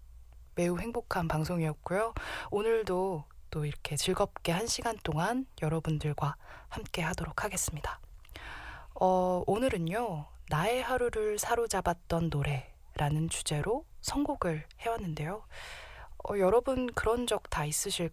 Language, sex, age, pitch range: Korean, female, 20-39, 155-220 Hz